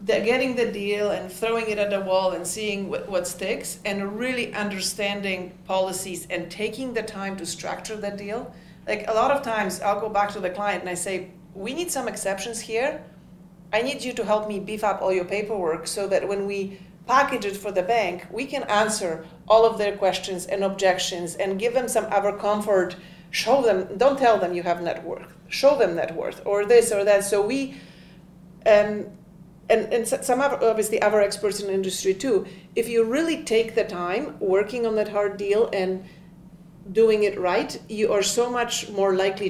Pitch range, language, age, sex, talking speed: 185-220 Hz, English, 40-59, female, 200 wpm